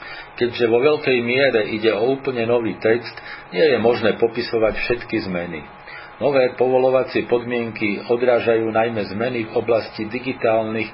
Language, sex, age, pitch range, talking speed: Slovak, male, 50-69, 110-125 Hz, 130 wpm